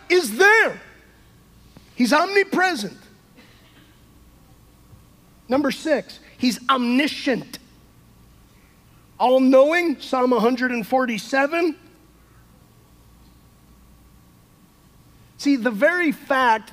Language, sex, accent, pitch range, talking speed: English, male, American, 210-275 Hz, 55 wpm